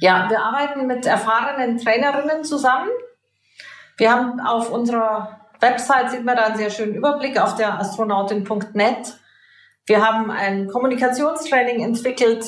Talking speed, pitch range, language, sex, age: 130 wpm, 200-235 Hz, German, female, 40-59